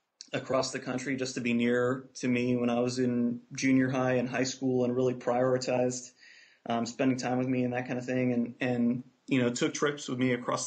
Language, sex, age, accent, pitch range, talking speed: English, male, 30-49, American, 120-130 Hz, 225 wpm